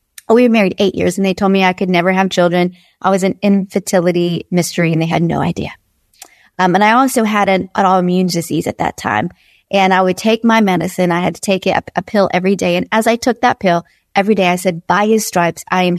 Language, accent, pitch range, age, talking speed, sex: English, American, 180-205 Hz, 30-49, 245 wpm, female